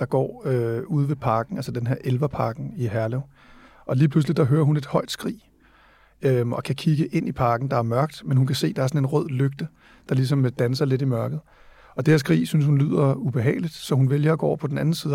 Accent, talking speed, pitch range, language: native, 260 wpm, 125-150 Hz, Danish